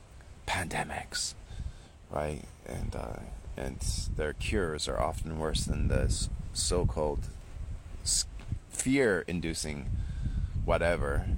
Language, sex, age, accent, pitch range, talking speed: English, male, 30-49, American, 75-95 Hz, 80 wpm